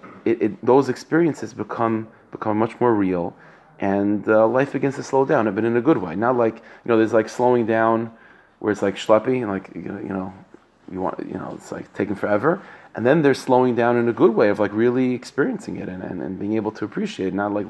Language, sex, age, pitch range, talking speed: English, male, 30-49, 105-130 Hz, 240 wpm